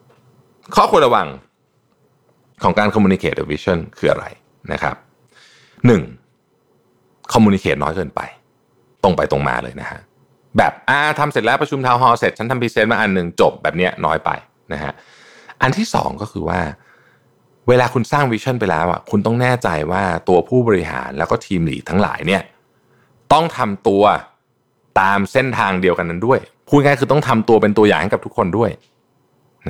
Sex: male